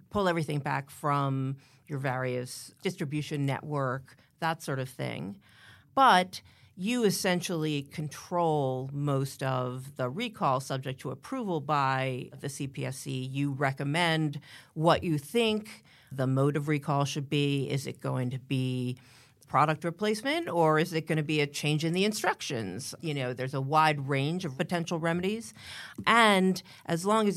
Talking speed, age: 150 wpm, 40-59